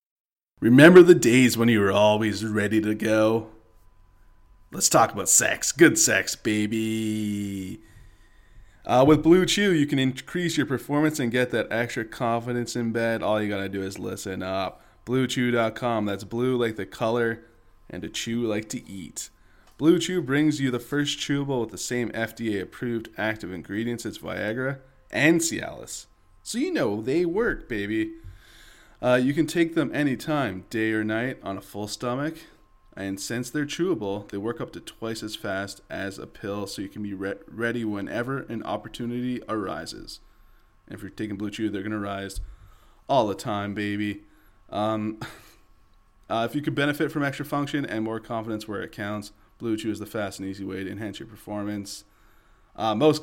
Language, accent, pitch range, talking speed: English, American, 100-125 Hz, 175 wpm